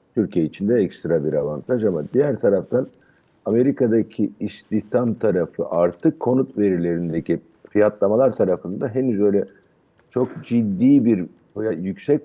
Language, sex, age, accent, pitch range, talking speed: Turkish, male, 50-69, native, 95-125 Hz, 115 wpm